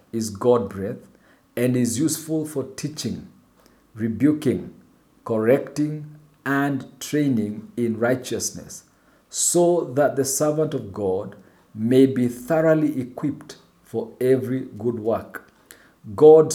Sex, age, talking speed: male, 50-69, 105 wpm